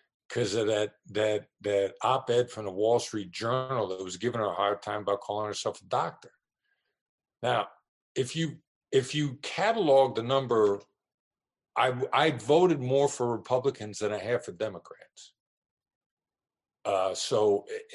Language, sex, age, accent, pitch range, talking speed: English, male, 50-69, American, 105-140 Hz, 150 wpm